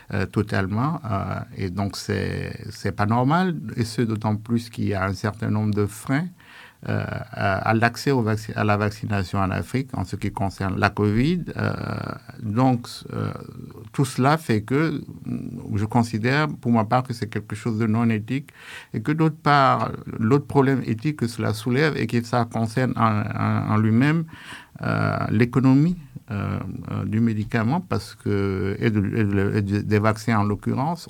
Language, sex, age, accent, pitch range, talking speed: French, male, 50-69, French, 105-130 Hz, 175 wpm